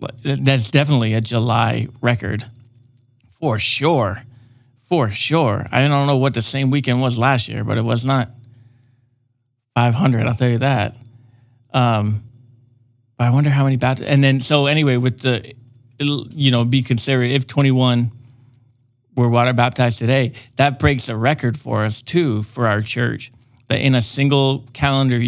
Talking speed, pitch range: 160 wpm, 120-130 Hz